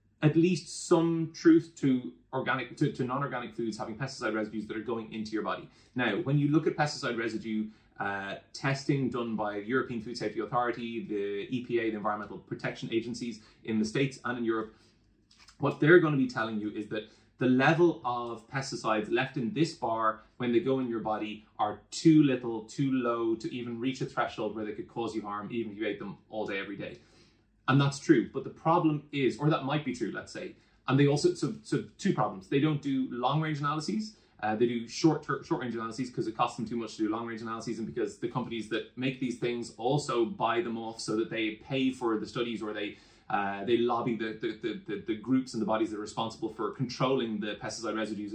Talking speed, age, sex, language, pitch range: 225 wpm, 20-39, male, English, 110-135 Hz